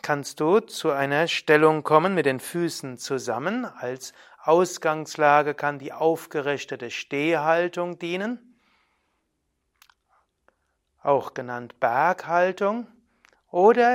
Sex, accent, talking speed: male, German, 90 wpm